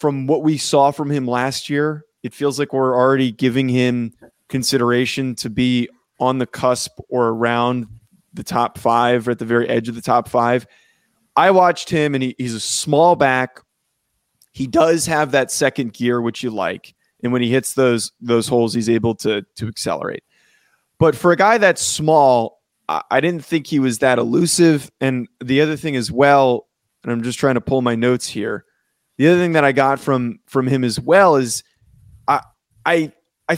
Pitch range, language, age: 120-150 Hz, English, 20-39